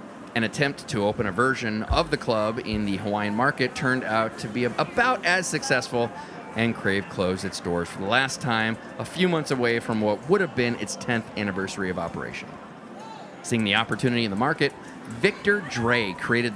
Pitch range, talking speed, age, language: 110-155 Hz, 190 wpm, 30-49, English